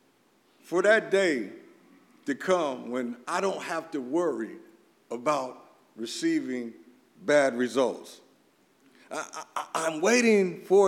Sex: male